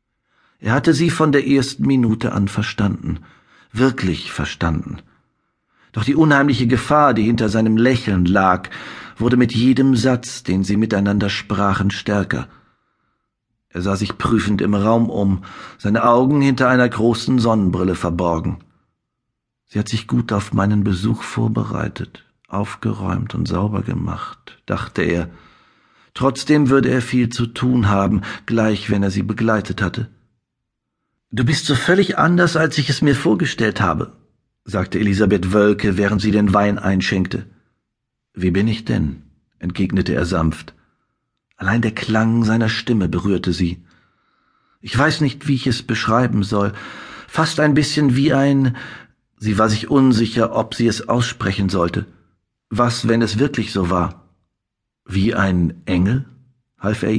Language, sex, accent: German, male, German